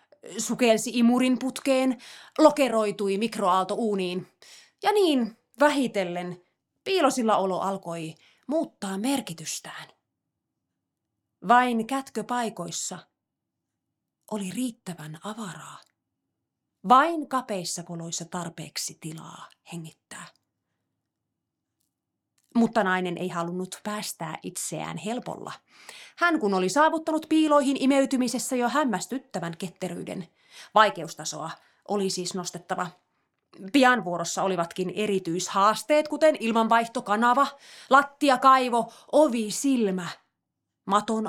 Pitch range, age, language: 180-260 Hz, 30-49, Finnish